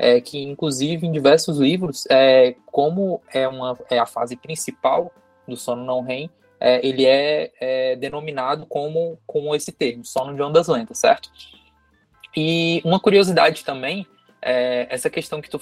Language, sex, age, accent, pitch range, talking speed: Portuguese, male, 20-39, Brazilian, 125-165 Hz, 135 wpm